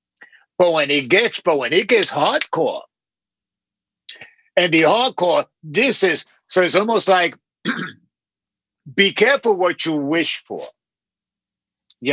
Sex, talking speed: male, 125 wpm